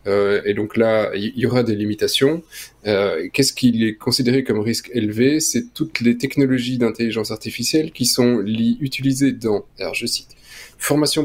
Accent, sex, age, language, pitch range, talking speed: French, male, 20-39, French, 115-140 Hz, 175 wpm